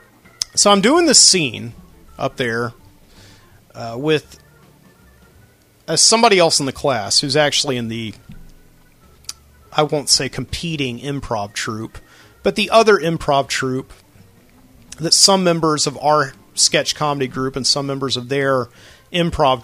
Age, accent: 40-59, American